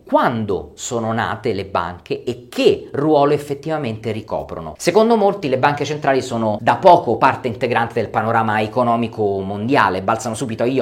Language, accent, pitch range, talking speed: Italian, native, 115-160 Hz, 150 wpm